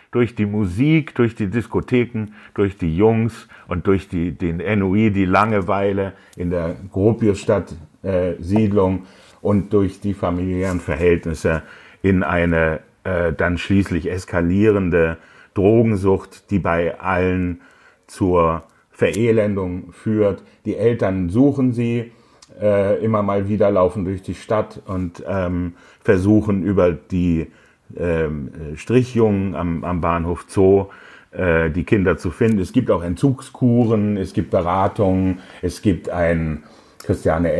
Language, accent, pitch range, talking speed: German, German, 85-105 Hz, 115 wpm